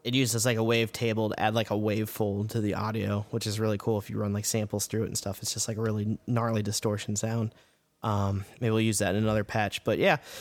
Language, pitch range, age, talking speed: English, 100-115 Hz, 20-39, 265 wpm